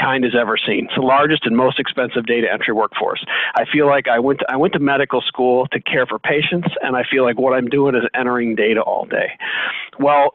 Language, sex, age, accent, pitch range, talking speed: English, male, 50-69, American, 130-150 Hz, 240 wpm